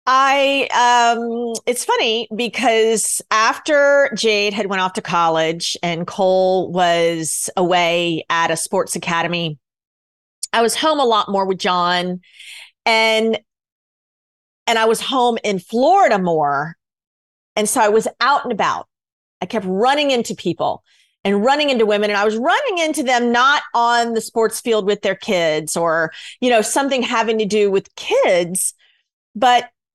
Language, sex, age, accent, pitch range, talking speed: English, female, 40-59, American, 185-245 Hz, 150 wpm